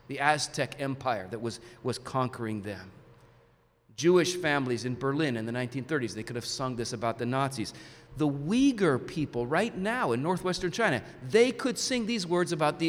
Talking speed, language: 175 wpm, English